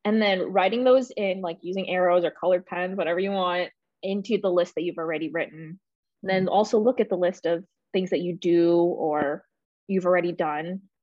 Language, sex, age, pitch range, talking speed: English, female, 20-39, 175-215 Hz, 195 wpm